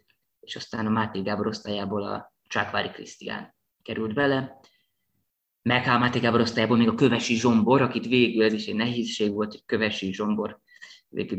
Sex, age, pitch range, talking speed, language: male, 20-39, 110-130 Hz, 150 wpm, Hungarian